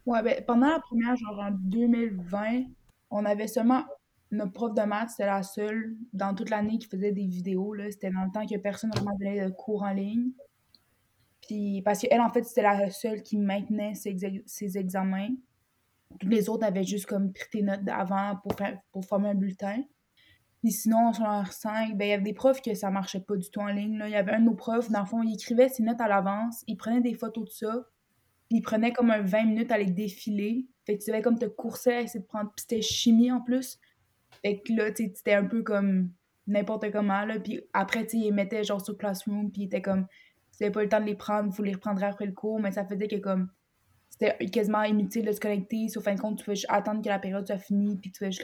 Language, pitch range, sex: French, 200-225 Hz, female